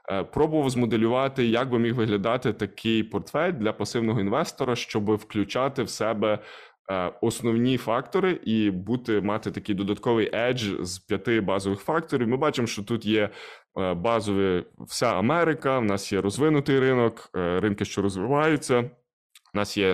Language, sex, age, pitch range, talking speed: Ukrainian, male, 20-39, 100-125 Hz, 140 wpm